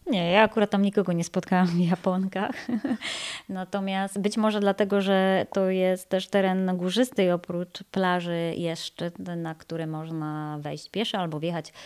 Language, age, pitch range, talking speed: Polish, 20-39, 170-200 Hz, 145 wpm